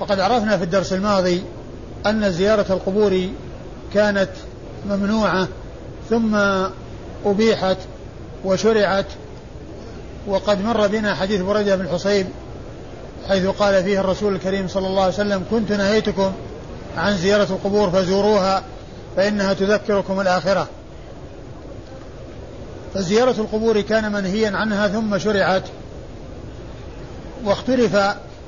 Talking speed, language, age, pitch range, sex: 95 wpm, Arabic, 50-69, 195-210 Hz, male